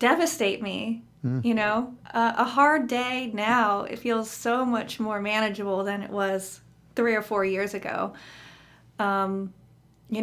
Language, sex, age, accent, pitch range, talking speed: English, female, 30-49, American, 205-245 Hz, 145 wpm